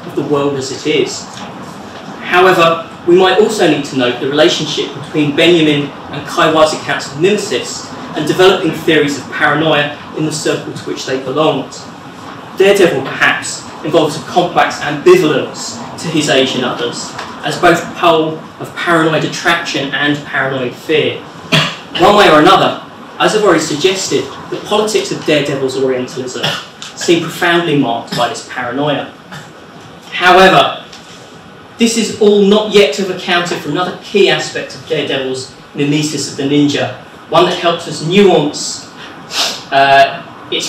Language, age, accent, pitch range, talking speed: English, 20-39, British, 145-180 Hz, 145 wpm